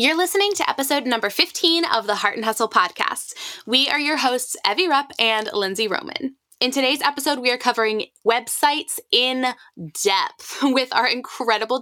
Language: English